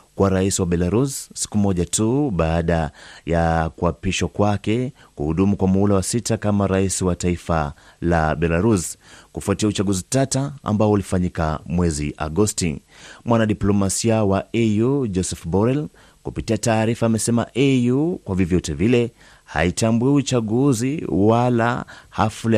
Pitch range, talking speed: 90-120 Hz, 125 wpm